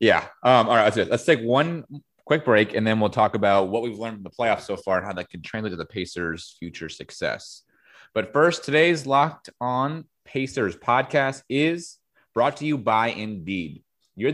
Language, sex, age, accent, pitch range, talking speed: English, male, 30-49, American, 100-130 Hz, 195 wpm